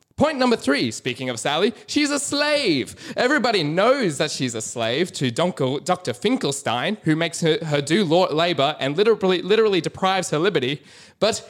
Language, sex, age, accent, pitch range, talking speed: English, male, 20-39, Australian, 135-185 Hz, 160 wpm